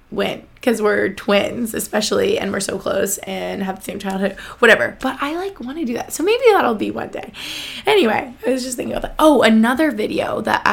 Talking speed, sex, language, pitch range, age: 220 wpm, female, English, 210-280 Hz, 20-39